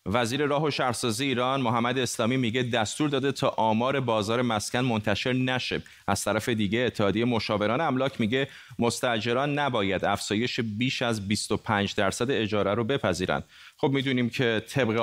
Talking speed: 150 wpm